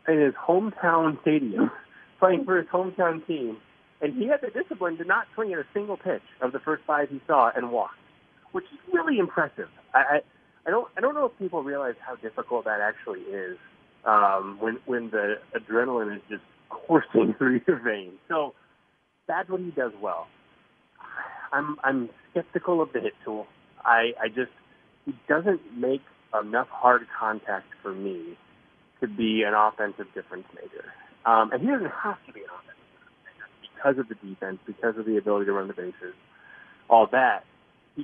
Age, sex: 30-49, male